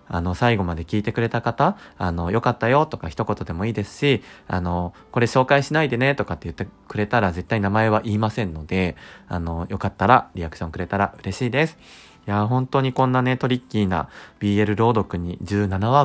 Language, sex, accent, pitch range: Japanese, male, native, 95-125 Hz